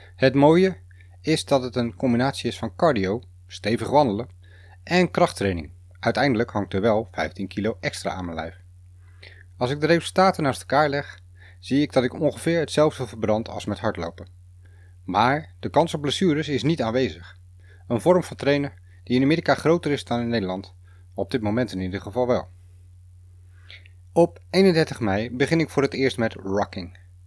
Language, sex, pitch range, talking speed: Dutch, male, 90-130 Hz, 170 wpm